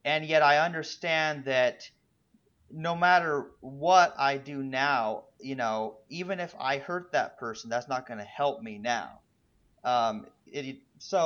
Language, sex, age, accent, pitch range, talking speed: English, male, 30-49, American, 125-175 Hz, 155 wpm